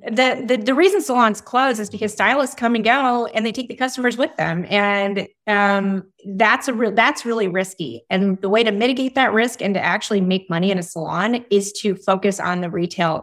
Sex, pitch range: female, 175-225 Hz